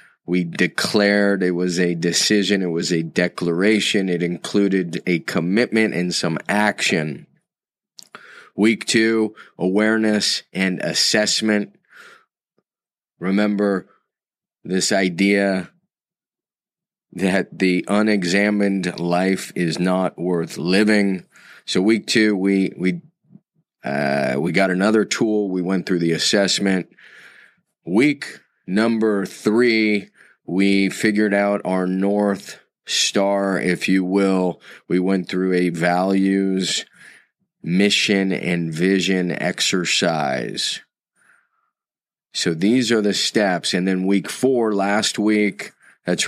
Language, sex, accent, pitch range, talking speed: English, male, American, 90-105 Hz, 105 wpm